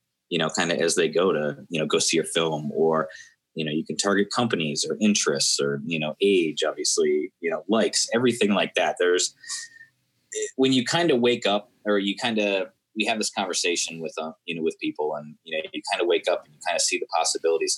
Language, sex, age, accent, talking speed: English, male, 20-39, American, 235 wpm